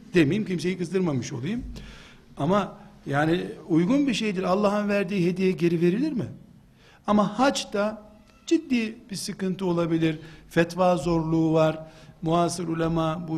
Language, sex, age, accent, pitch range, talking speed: Turkish, male, 60-79, native, 160-200 Hz, 125 wpm